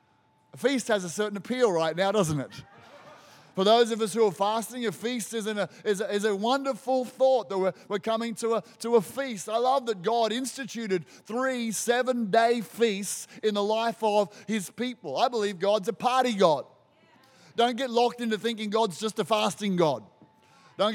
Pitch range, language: 195-230 Hz, English